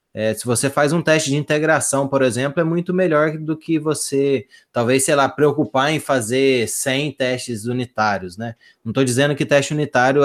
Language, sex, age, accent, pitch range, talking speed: Portuguese, male, 20-39, Brazilian, 125-155 Hz, 180 wpm